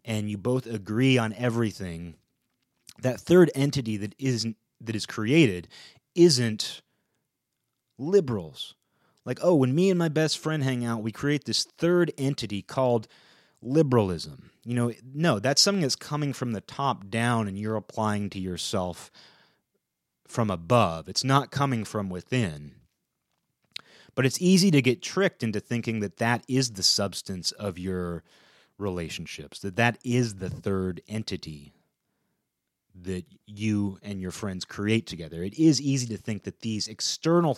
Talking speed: 150 wpm